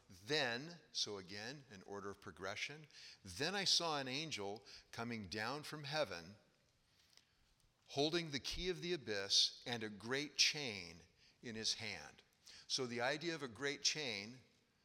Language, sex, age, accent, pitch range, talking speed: English, male, 50-69, American, 110-140 Hz, 145 wpm